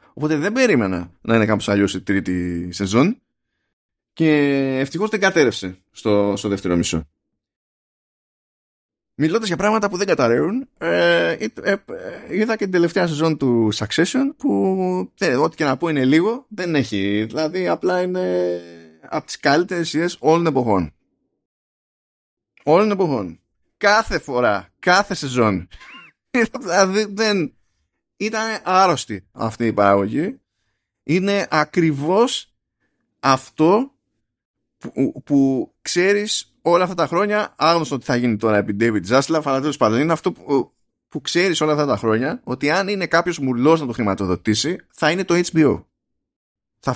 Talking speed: 135 wpm